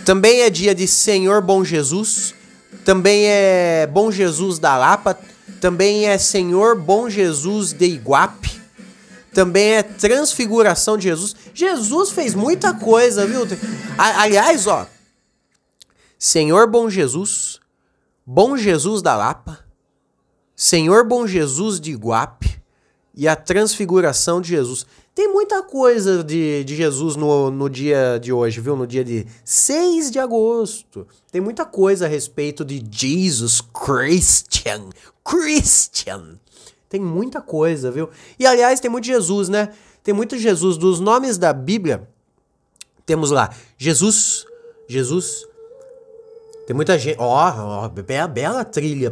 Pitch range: 150-220 Hz